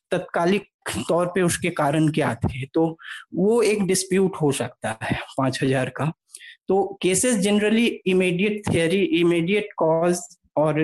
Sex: male